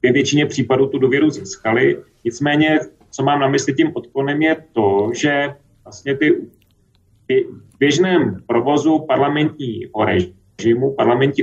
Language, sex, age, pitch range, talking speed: Slovak, male, 30-49, 115-150 Hz, 125 wpm